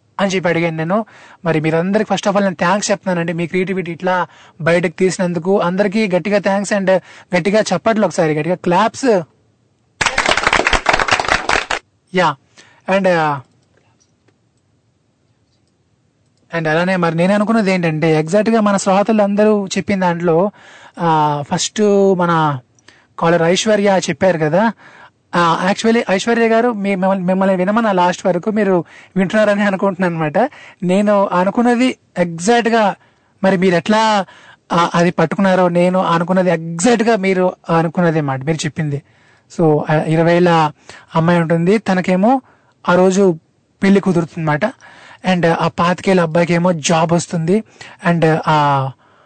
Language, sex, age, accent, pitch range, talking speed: Telugu, male, 20-39, native, 160-200 Hz, 115 wpm